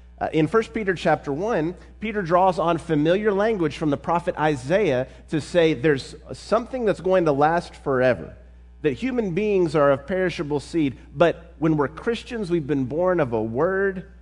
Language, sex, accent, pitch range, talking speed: English, male, American, 110-160 Hz, 170 wpm